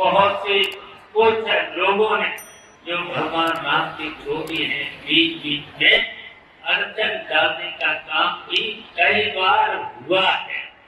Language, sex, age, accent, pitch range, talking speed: Hindi, male, 50-69, native, 165-220 Hz, 120 wpm